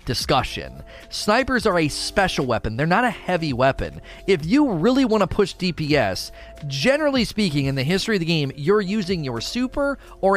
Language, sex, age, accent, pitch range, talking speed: English, male, 30-49, American, 125-175 Hz, 180 wpm